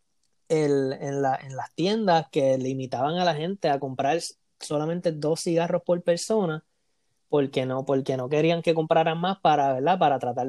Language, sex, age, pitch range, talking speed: English, male, 20-39, 145-180 Hz, 170 wpm